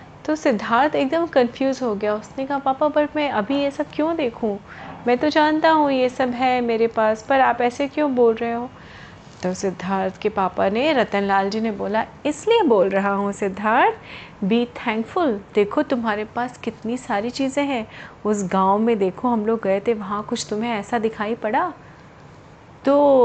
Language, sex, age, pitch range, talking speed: Hindi, female, 30-49, 220-285 Hz, 180 wpm